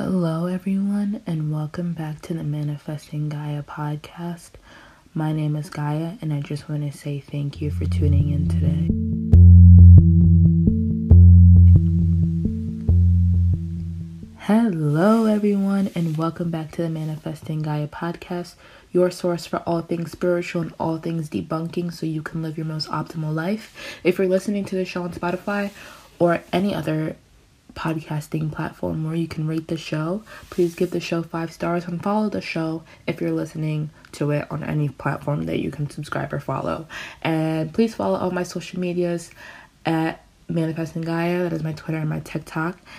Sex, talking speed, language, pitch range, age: female, 160 wpm, English, 150-175 Hz, 20-39